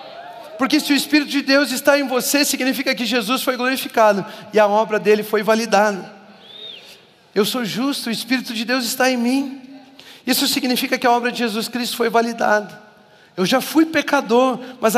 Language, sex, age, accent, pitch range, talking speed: Portuguese, male, 40-59, Brazilian, 230-275 Hz, 180 wpm